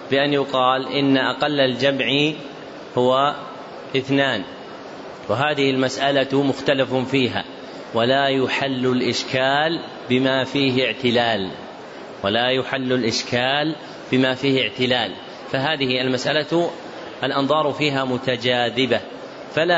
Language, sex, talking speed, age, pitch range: Arabic, male, 90 wpm, 30-49, 125-145 Hz